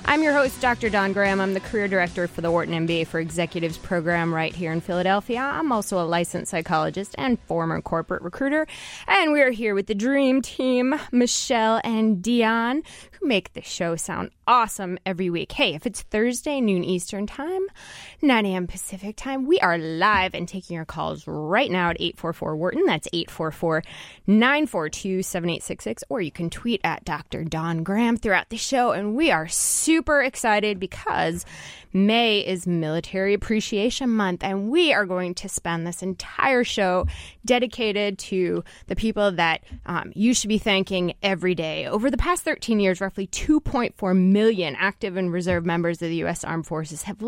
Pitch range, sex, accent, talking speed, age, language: 170-225 Hz, female, American, 175 wpm, 20-39, English